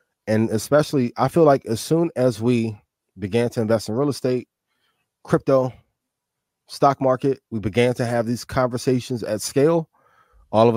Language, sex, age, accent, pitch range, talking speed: English, male, 20-39, American, 105-130 Hz, 155 wpm